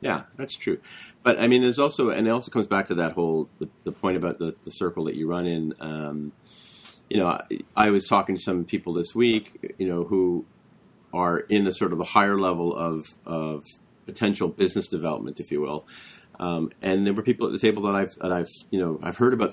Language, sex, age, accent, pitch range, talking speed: English, male, 40-59, American, 80-95 Hz, 230 wpm